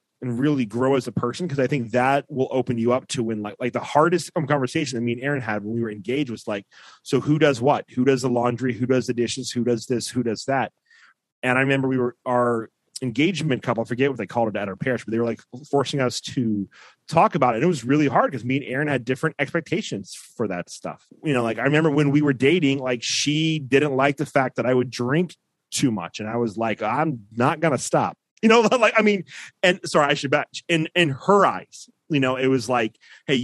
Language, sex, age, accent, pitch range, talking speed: English, male, 30-49, American, 120-150 Hz, 255 wpm